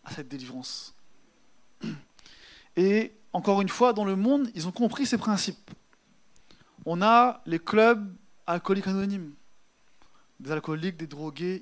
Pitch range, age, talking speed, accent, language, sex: 170-210 Hz, 20-39, 130 wpm, French, French, male